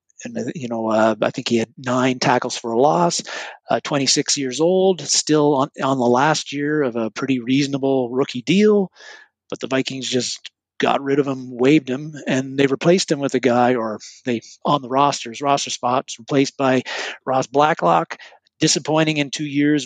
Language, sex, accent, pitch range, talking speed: English, male, American, 125-145 Hz, 185 wpm